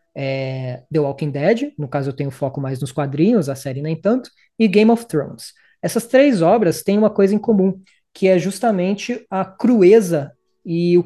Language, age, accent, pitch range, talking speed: Portuguese, 20-39, Brazilian, 160-210 Hz, 190 wpm